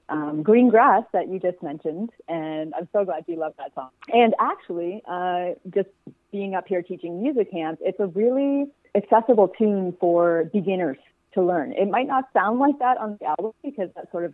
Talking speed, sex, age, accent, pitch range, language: 195 wpm, female, 30-49, American, 160-215 Hz, English